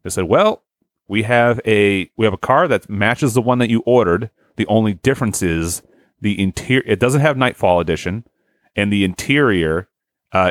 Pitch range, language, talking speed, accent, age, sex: 90-115 Hz, English, 185 wpm, American, 30-49, male